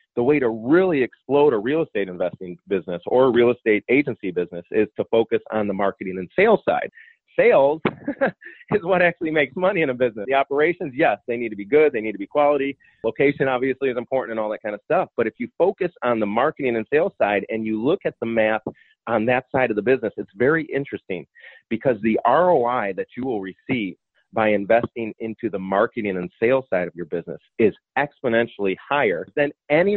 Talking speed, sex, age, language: 210 wpm, male, 30-49, English